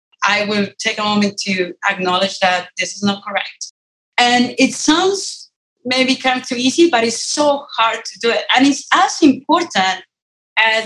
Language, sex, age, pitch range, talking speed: English, female, 30-49, 200-255 Hz, 180 wpm